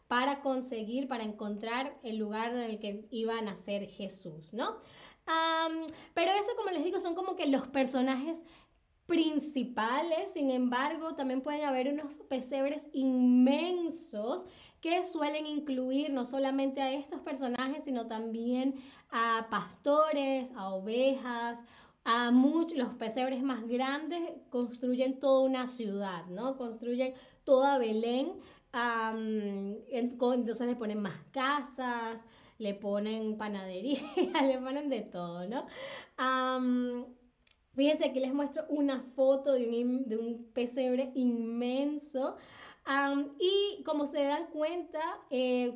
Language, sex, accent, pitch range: Spanish, female, American, 235-285 Hz